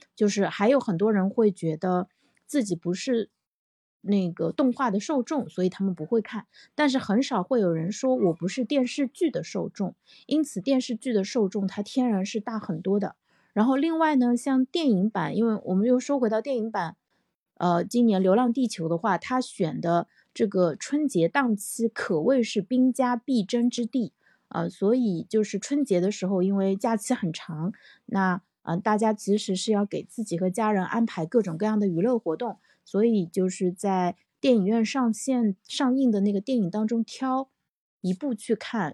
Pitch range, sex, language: 190-245 Hz, female, Chinese